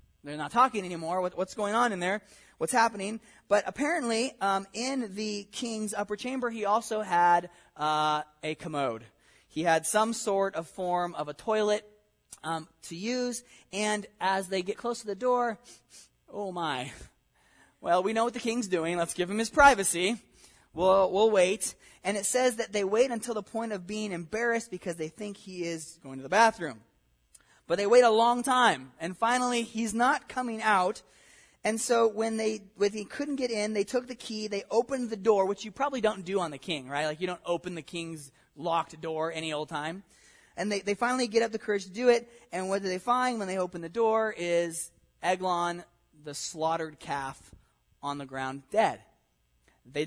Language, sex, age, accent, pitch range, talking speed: English, male, 20-39, American, 165-230 Hz, 195 wpm